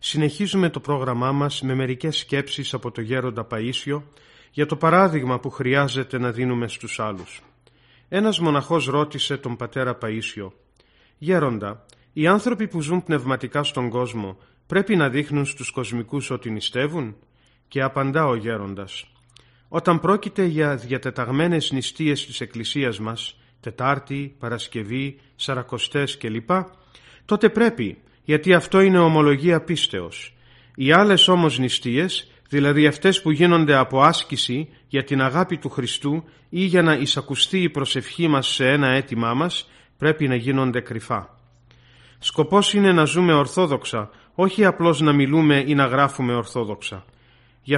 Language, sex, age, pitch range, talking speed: Greek, male, 30-49, 125-160 Hz, 135 wpm